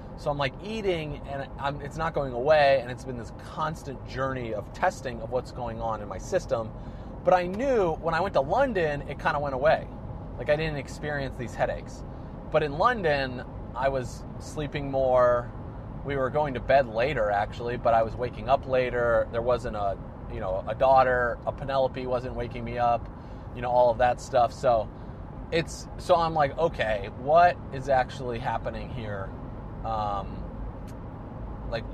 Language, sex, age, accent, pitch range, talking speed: English, male, 30-49, American, 120-145 Hz, 175 wpm